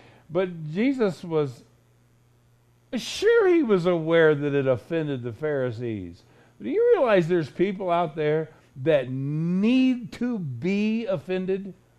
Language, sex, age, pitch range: English, male, 60-79, 130-200 Hz